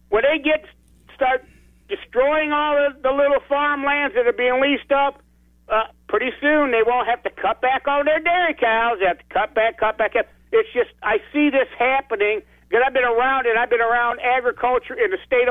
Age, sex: 60-79, male